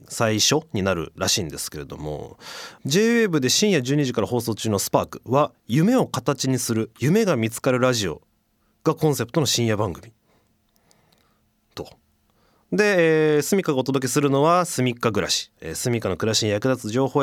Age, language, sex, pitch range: 30-49, Japanese, male, 110-160 Hz